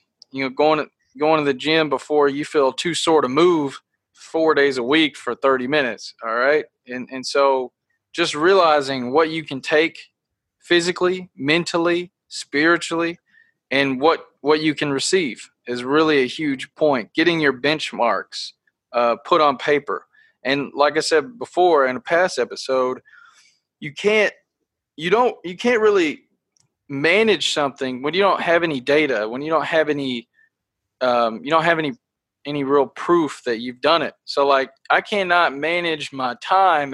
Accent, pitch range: American, 140-175 Hz